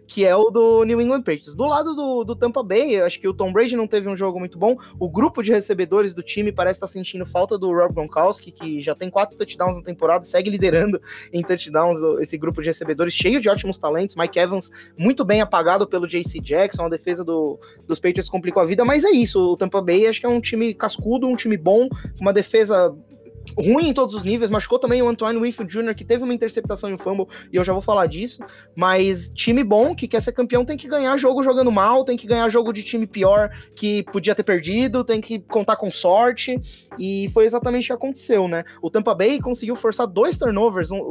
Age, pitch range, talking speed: 20-39, 185-235 Hz, 230 wpm